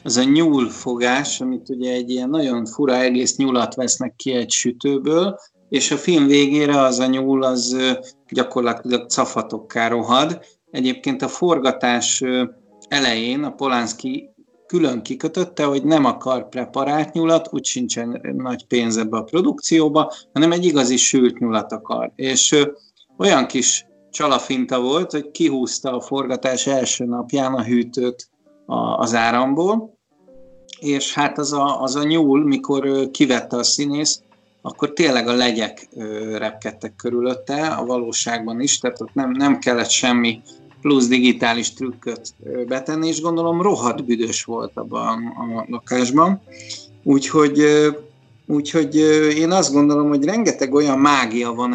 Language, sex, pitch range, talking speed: Hungarian, male, 120-145 Hz, 135 wpm